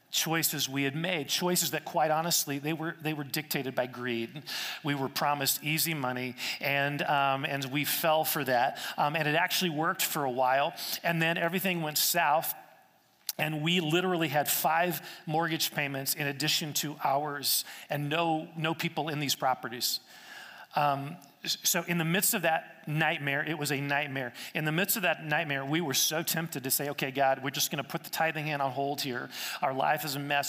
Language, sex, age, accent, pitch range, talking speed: English, male, 40-59, American, 140-170 Hz, 195 wpm